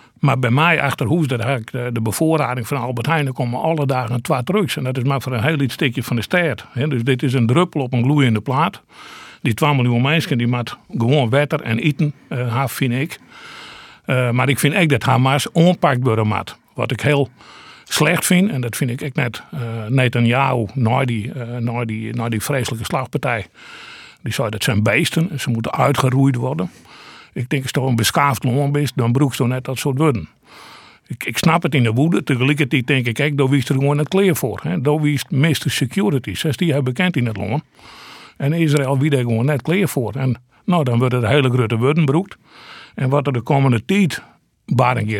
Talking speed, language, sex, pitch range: 210 wpm, Dutch, male, 120-150 Hz